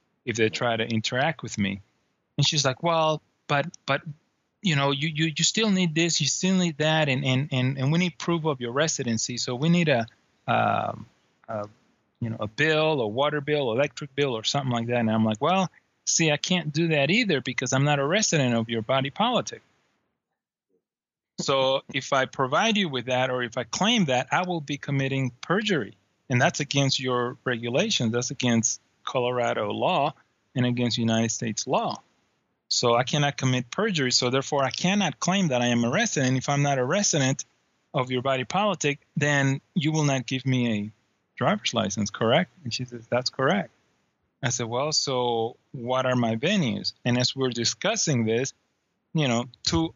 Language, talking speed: English, 190 wpm